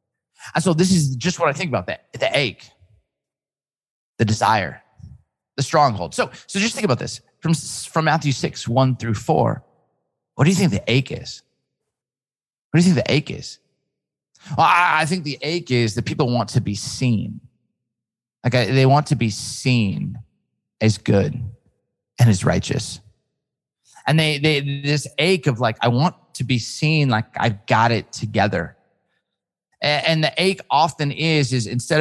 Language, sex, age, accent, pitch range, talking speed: English, male, 30-49, American, 110-140 Hz, 170 wpm